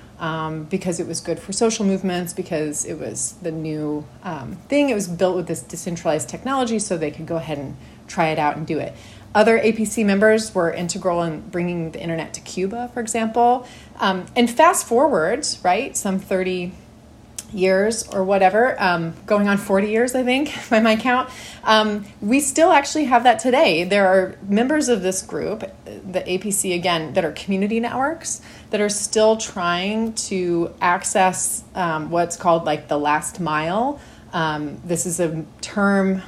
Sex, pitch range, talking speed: female, 170-215 Hz, 175 wpm